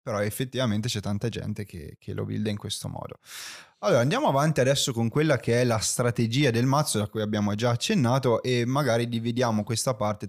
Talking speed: 200 wpm